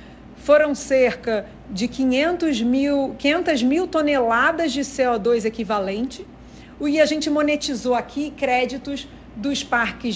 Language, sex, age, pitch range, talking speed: Portuguese, female, 40-59, 230-285 Hz, 105 wpm